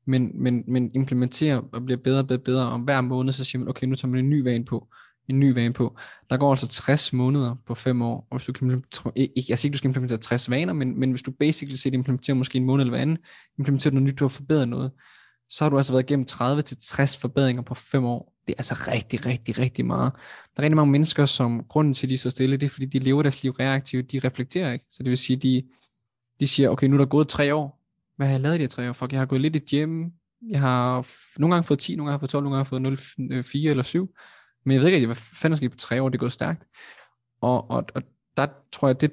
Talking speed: 275 wpm